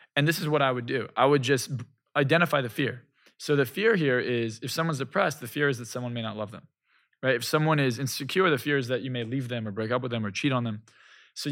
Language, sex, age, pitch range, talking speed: English, male, 20-39, 120-145 Hz, 275 wpm